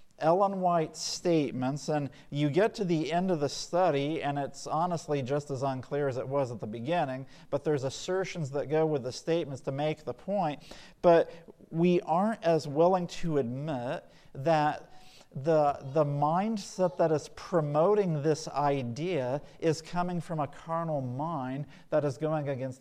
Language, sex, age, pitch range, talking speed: English, male, 50-69, 140-175 Hz, 165 wpm